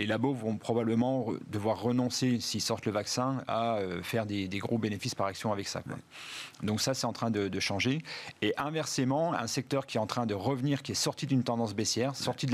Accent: French